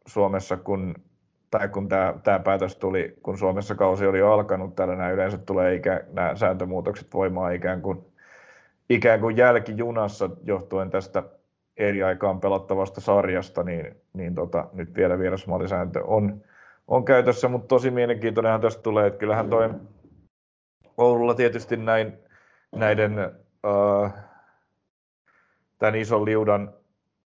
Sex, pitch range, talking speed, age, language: male, 95-110 Hz, 125 wpm, 30-49, Finnish